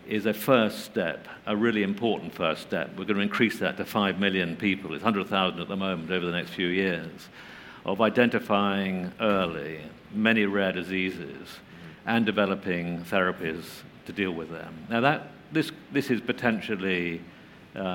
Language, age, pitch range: English, 50-69, 95-120 Hz